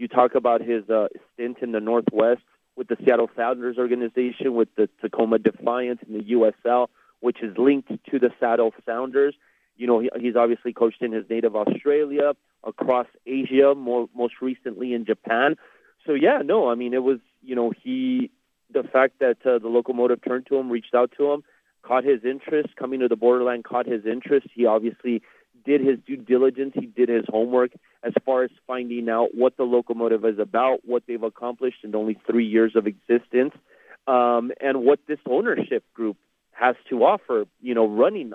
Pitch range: 115-130 Hz